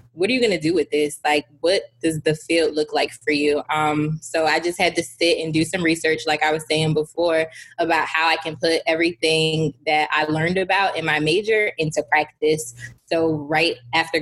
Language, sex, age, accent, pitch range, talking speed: English, female, 20-39, American, 150-165 Hz, 215 wpm